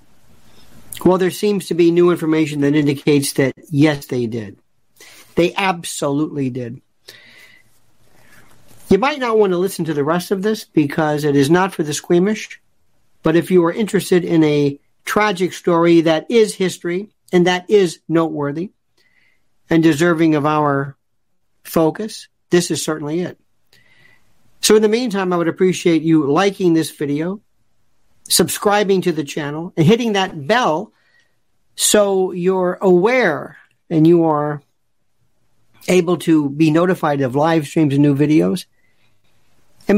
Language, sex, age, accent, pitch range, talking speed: English, male, 50-69, American, 145-190 Hz, 145 wpm